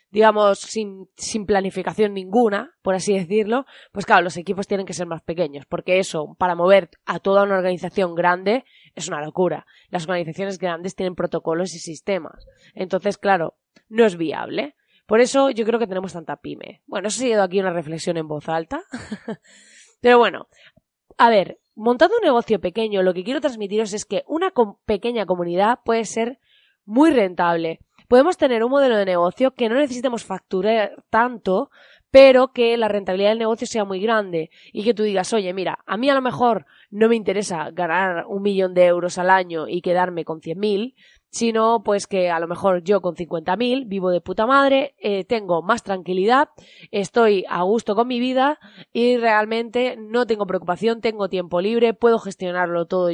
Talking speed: 180 wpm